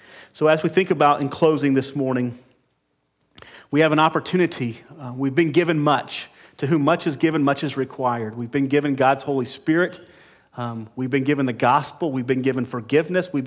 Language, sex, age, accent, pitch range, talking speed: English, male, 40-59, American, 125-155 Hz, 190 wpm